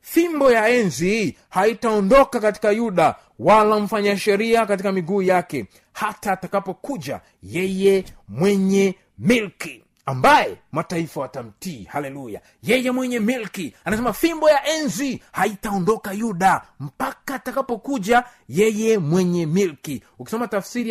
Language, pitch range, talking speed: Swahili, 185-230 Hz, 105 wpm